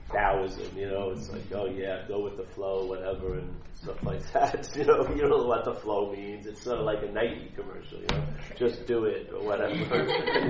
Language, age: English, 40-59